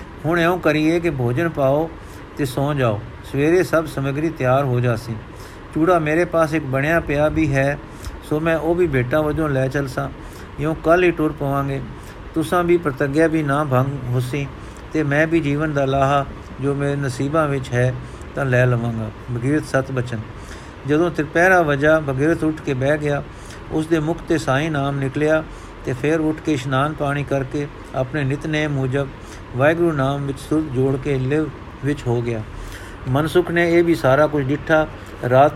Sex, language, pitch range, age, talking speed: male, Punjabi, 130-155 Hz, 50-69, 165 wpm